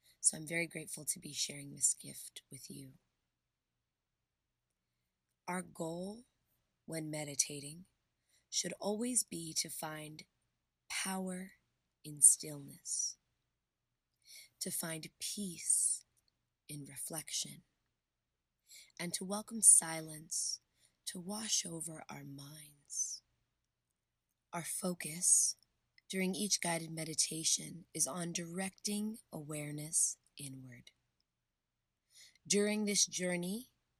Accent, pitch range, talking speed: American, 150-185 Hz, 90 wpm